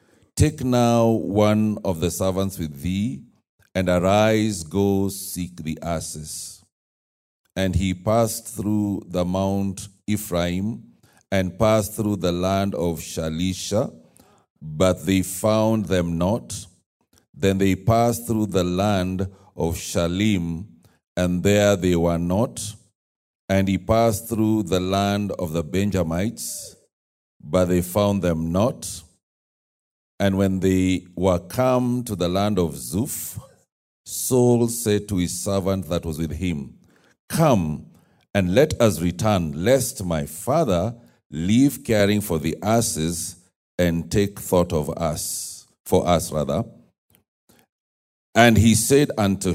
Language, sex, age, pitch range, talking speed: English, male, 40-59, 90-110 Hz, 125 wpm